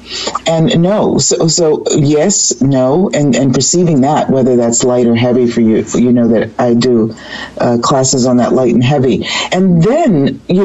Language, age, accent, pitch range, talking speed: English, 50-69, American, 130-185 Hz, 180 wpm